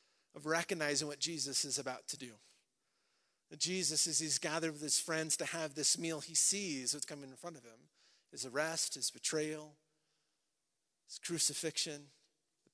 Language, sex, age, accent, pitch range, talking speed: English, male, 30-49, American, 135-165 Hz, 165 wpm